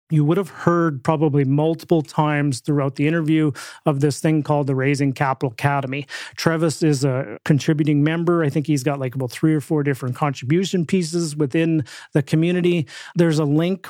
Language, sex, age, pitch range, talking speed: English, male, 30-49, 140-165 Hz, 175 wpm